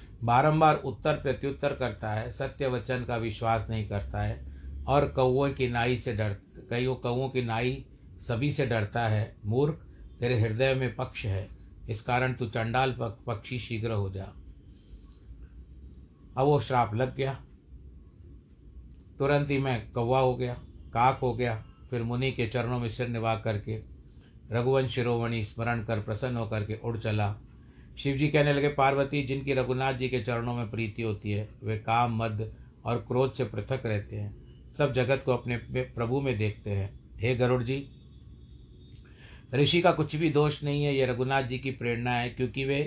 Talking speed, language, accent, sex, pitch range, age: 165 wpm, Hindi, native, male, 110-130 Hz, 60-79